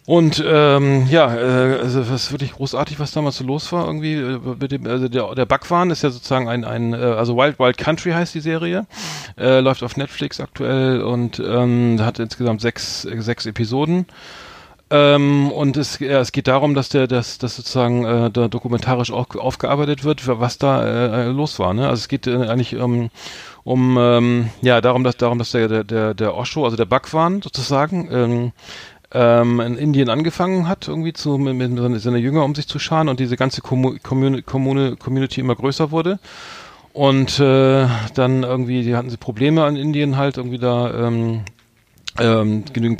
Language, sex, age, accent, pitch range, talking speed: German, male, 40-59, German, 120-140 Hz, 185 wpm